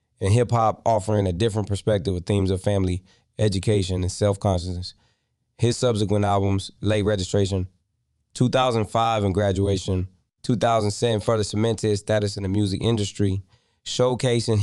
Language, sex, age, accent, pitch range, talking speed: English, male, 20-39, American, 95-115 Hz, 125 wpm